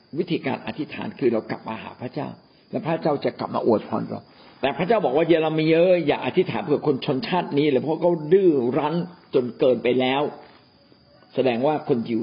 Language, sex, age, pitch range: Thai, male, 60-79, 140-185 Hz